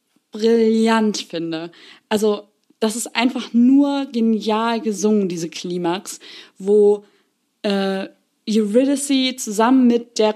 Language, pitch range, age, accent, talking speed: German, 195-235 Hz, 20-39, German, 100 wpm